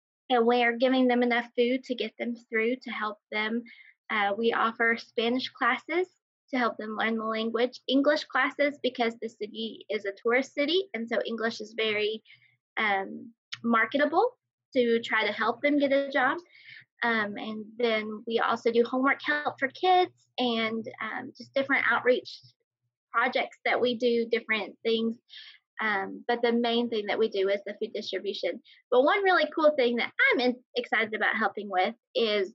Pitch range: 215-255 Hz